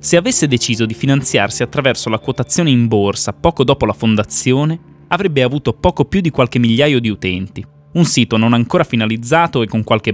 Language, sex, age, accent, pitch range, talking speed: Italian, male, 20-39, native, 105-140 Hz, 185 wpm